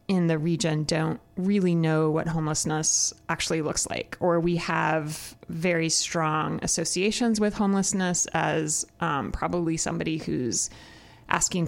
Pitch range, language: 155-180 Hz, English